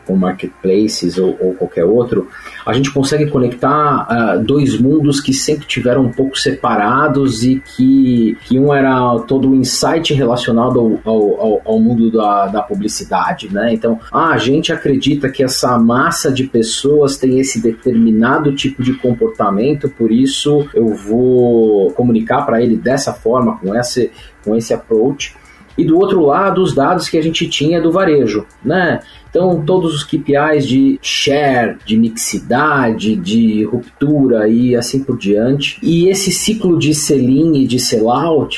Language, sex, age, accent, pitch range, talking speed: Portuguese, male, 30-49, Brazilian, 115-145 Hz, 160 wpm